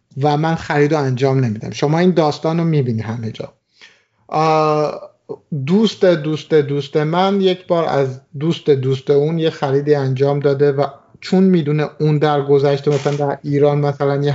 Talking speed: 160 wpm